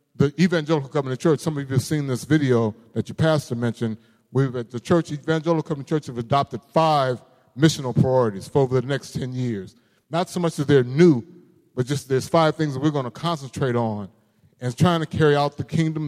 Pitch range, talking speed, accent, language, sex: 135-165 Hz, 215 wpm, American, English, male